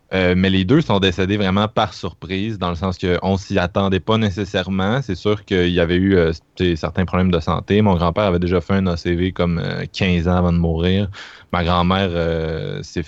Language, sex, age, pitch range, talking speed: French, male, 20-39, 85-100 Hz, 215 wpm